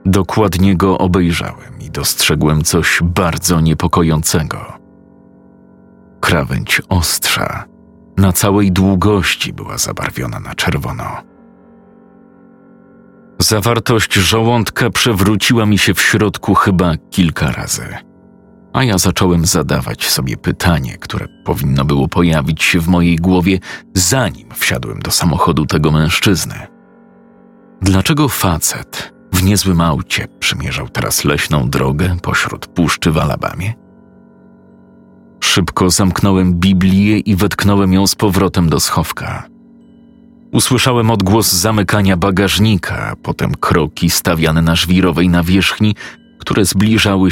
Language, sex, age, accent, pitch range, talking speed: Polish, male, 40-59, native, 85-110 Hz, 105 wpm